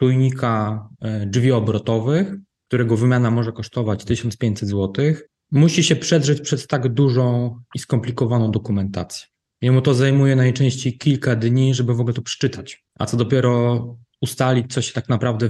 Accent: native